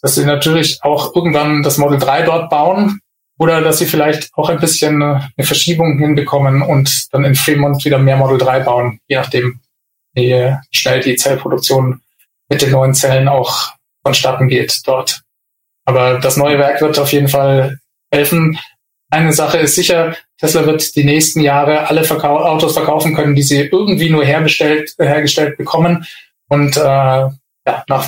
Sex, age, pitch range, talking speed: male, 20-39, 140-170 Hz, 165 wpm